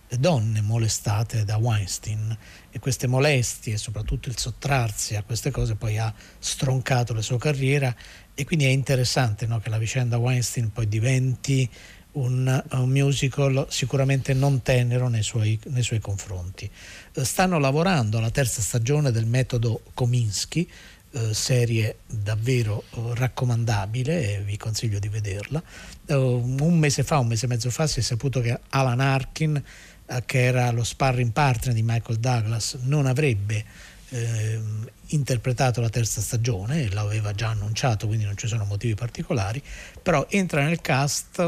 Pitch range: 110-135 Hz